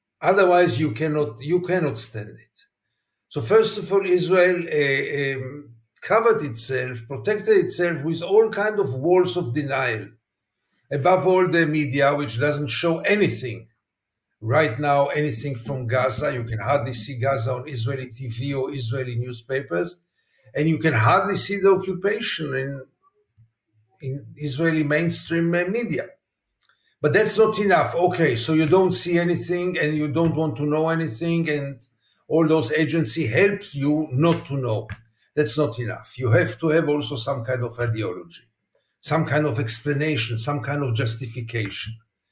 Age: 50-69